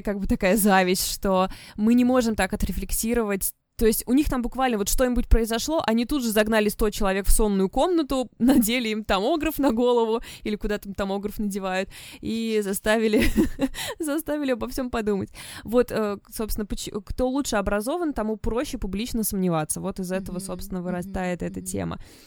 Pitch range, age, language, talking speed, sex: 185-230 Hz, 20-39, Russian, 160 wpm, female